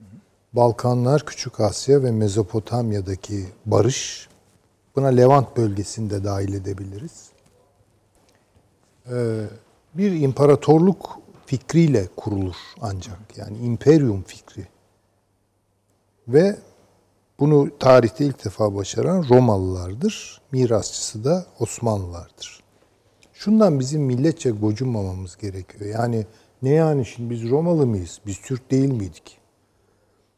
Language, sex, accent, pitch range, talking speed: Turkish, male, native, 100-125 Hz, 90 wpm